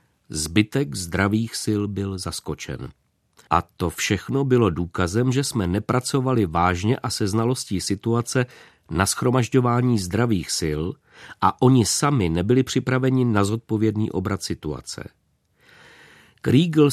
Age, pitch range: 40-59, 90-115 Hz